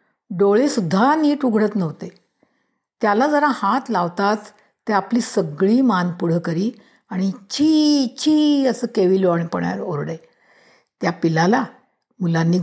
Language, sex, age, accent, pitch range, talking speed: Marathi, female, 60-79, native, 180-250 Hz, 110 wpm